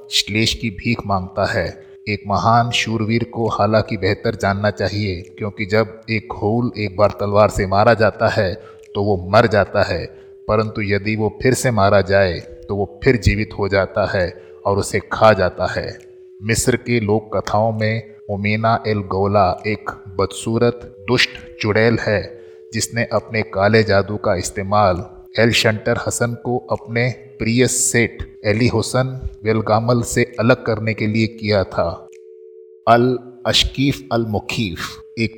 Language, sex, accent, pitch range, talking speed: Hindi, male, native, 100-115 Hz, 150 wpm